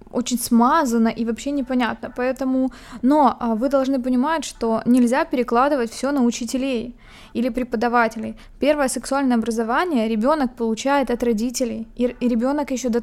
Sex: female